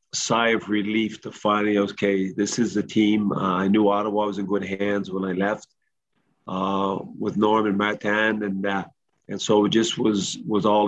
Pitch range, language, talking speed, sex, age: 95-115 Hz, English, 195 wpm, male, 40-59